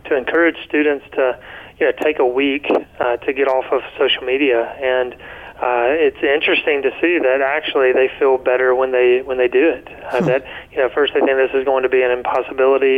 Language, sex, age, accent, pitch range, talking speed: English, male, 30-49, American, 125-145 Hz, 215 wpm